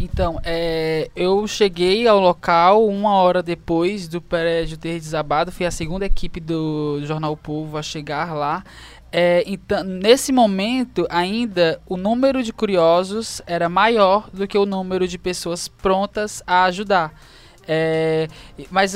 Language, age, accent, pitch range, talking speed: Portuguese, 10-29, Brazilian, 175-220 Hz, 130 wpm